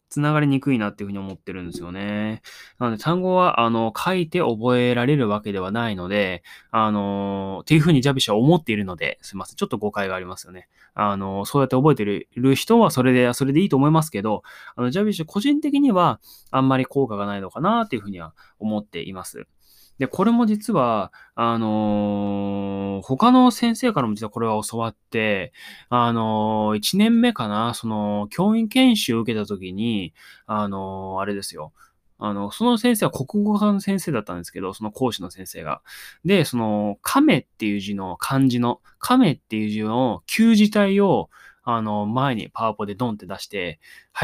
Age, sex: 20-39, male